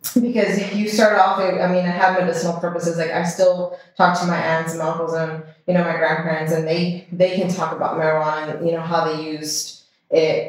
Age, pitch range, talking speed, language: 20-39, 160-190 Hz, 230 wpm, English